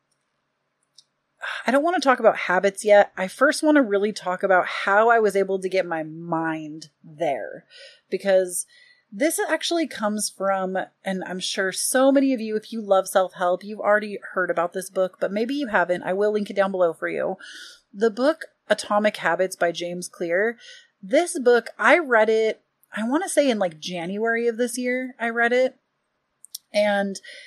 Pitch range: 185-255 Hz